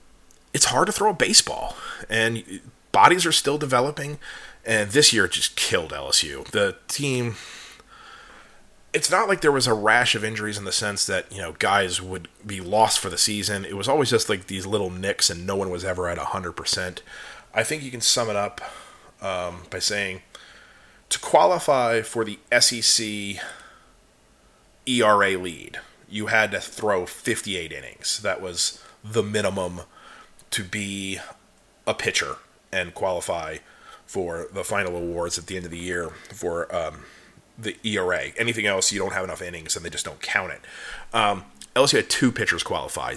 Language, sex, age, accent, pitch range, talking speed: English, male, 30-49, American, 90-115 Hz, 170 wpm